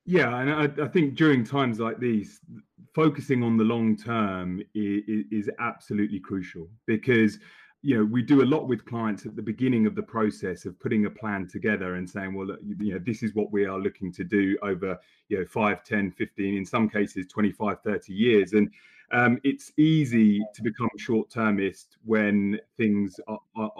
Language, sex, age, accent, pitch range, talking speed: English, male, 30-49, British, 105-120 Hz, 185 wpm